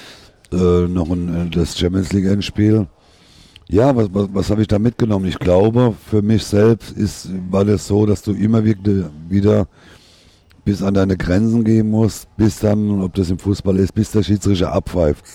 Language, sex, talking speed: German, male, 175 wpm